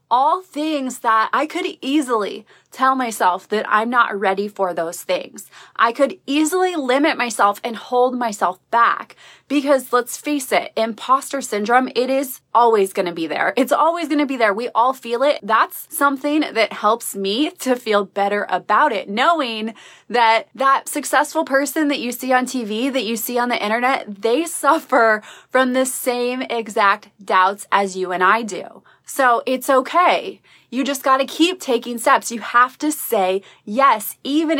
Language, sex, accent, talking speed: English, female, American, 170 wpm